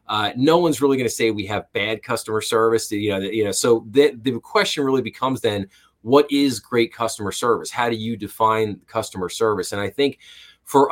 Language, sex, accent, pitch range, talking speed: English, male, American, 100-120 Hz, 210 wpm